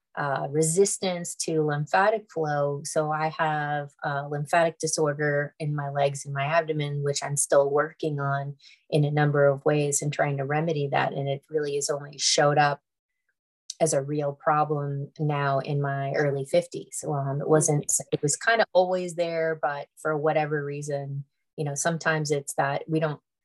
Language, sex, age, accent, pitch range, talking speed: English, female, 30-49, American, 140-155 Hz, 175 wpm